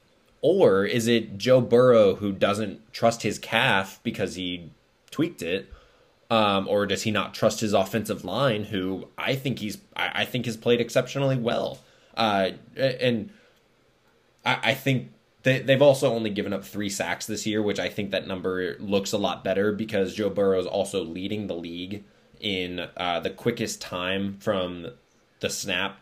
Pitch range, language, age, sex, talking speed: 95-120 Hz, English, 20-39, male, 170 wpm